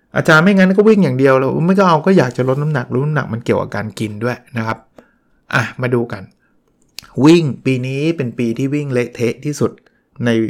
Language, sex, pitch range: Thai, male, 115-155 Hz